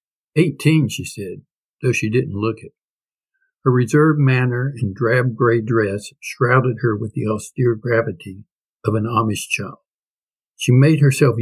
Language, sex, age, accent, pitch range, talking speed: English, male, 60-79, American, 105-135 Hz, 145 wpm